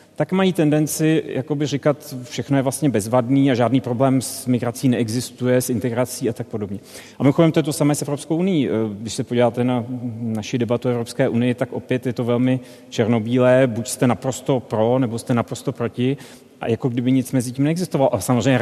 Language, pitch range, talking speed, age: Czech, 120-135 Hz, 195 wpm, 40-59